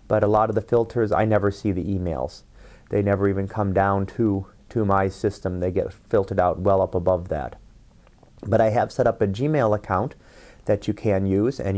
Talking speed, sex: 210 wpm, male